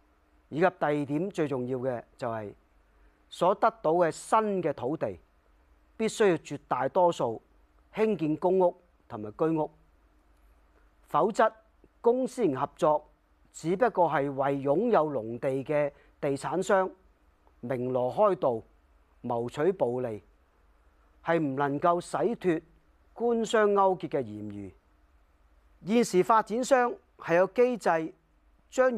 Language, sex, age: Chinese, male, 40-59